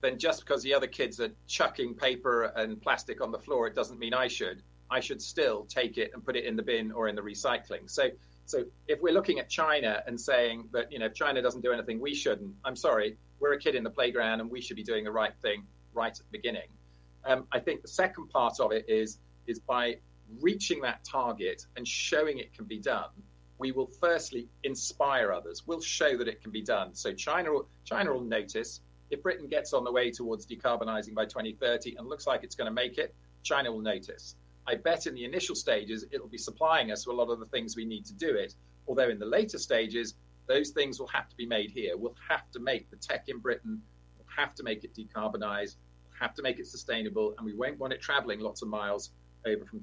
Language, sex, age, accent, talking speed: English, male, 40-59, British, 235 wpm